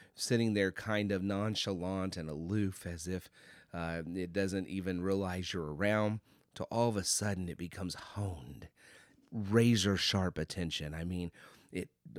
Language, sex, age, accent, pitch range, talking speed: English, male, 30-49, American, 90-115 Hz, 150 wpm